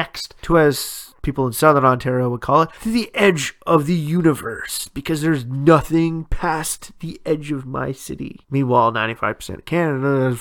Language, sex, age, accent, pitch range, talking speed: English, male, 30-49, American, 125-160 Hz, 165 wpm